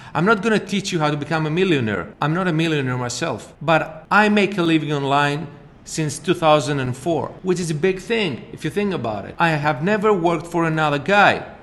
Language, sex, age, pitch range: Greek, male, 40-59, 145-190 Hz